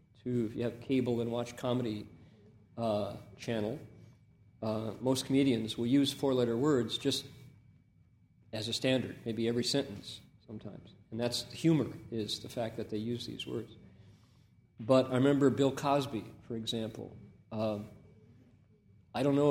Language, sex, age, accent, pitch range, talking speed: English, male, 50-69, American, 110-135 Hz, 140 wpm